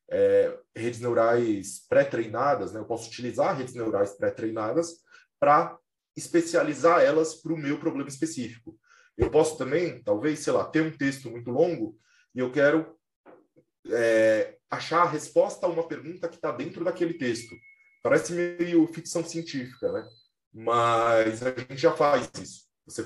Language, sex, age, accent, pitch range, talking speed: Portuguese, male, 20-39, Brazilian, 120-170 Hz, 150 wpm